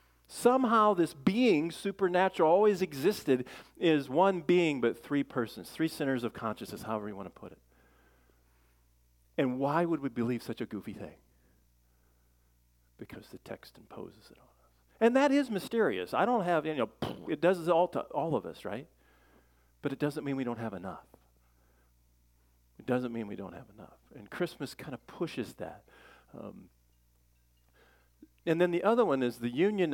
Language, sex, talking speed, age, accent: English, male, 170 wpm, 50-69, American